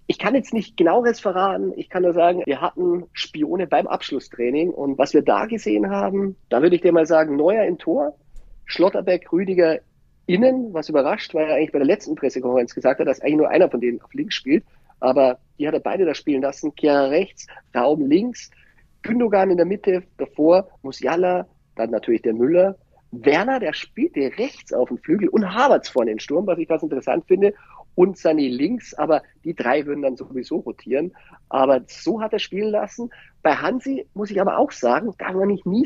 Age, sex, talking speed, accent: 50-69, male, 200 wpm, German